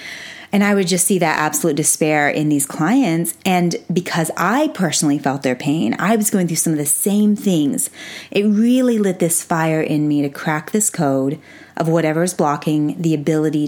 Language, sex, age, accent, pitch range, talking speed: English, female, 30-49, American, 150-185 Hz, 195 wpm